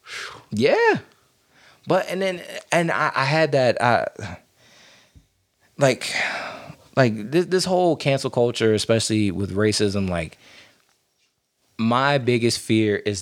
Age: 20-39